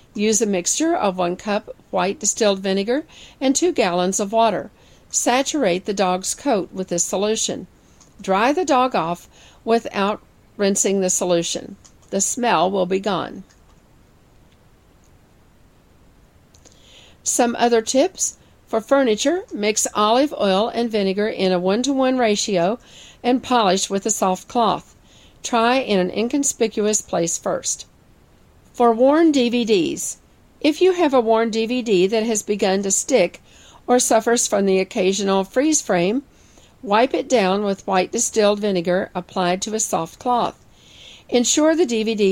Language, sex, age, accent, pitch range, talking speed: English, female, 50-69, American, 190-240 Hz, 135 wpm